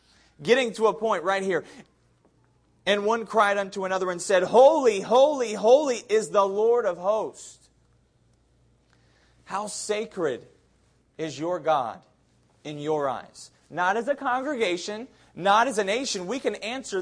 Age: 30-49